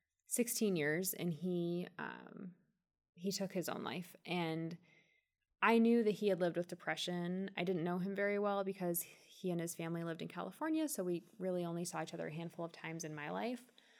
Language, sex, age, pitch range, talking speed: English, female, 20-39, 160-195 Hz, 200 wpm